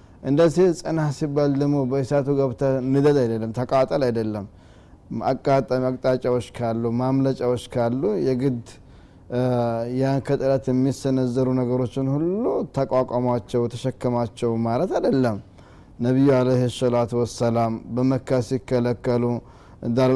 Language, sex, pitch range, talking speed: Amharic, male, 120-135 Hz, 90 wpm